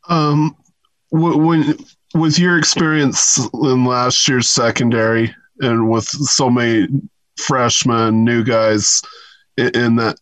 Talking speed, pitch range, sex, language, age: 105 wpm, 100-125 Hz, male, English, 20-39